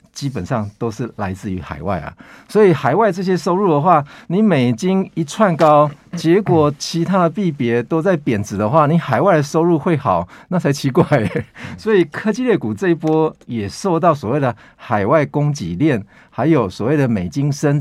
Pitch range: 115-165 Hz